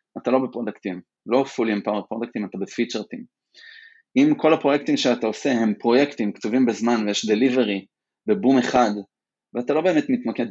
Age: 20-39